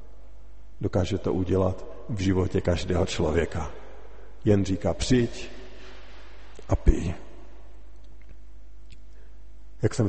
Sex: male